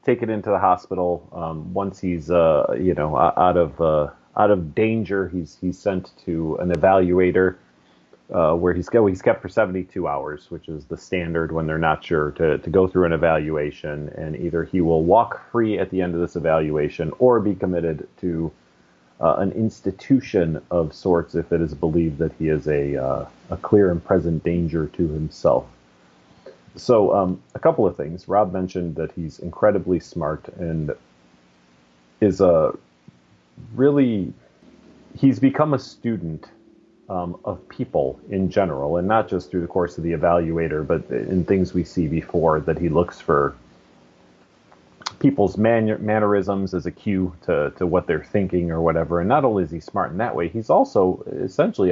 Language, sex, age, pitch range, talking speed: English, male, 30-49, 80-95 Hz, 175 wpm